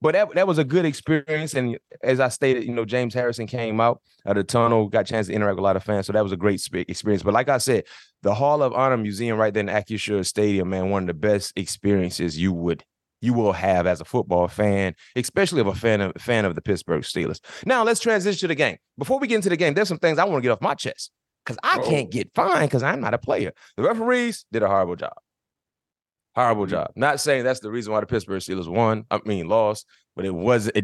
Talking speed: 255 wpm